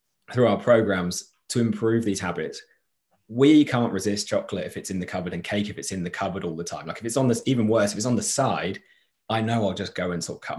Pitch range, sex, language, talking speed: 95-115 Hz, male, English, 265 wpm